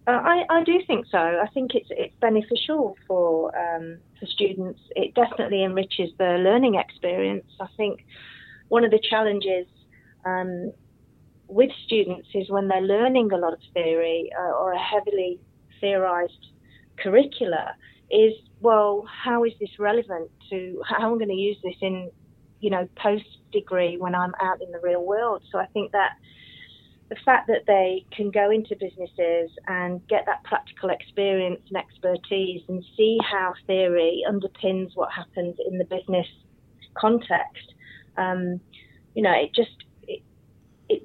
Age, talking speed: 30-49, 155 wpm